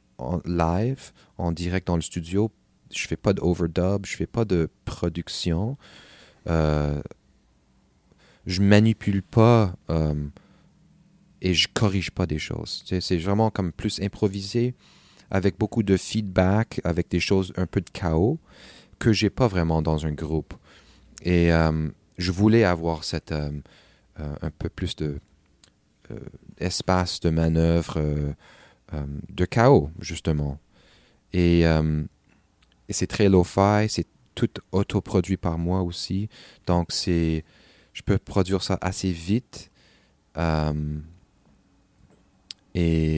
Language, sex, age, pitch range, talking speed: French, male, 30-49, 80-100 Hz, 140 wpm